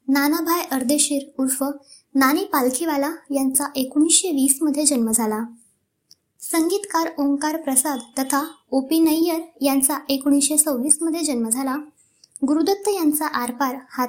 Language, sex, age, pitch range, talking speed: Marathi, male, 20-39, 260-315 Hz, 105 wpm